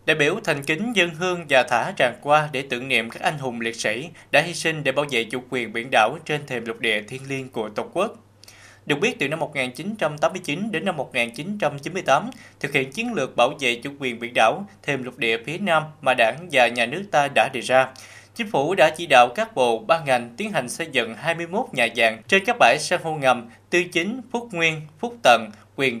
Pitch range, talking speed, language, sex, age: 120-165 Hz, 225 wpm, Vietnamese, male, 20-39